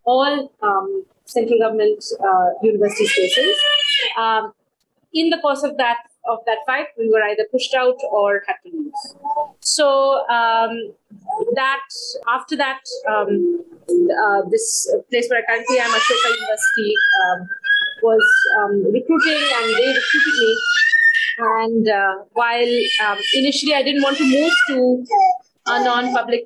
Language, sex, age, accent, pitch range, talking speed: English, female, 30-49, Indian, 240-375 Hz, 140 wpm